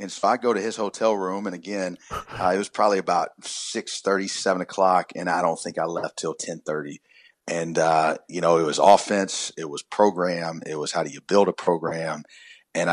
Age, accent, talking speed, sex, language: 40-59, American, 220 wpm, male, English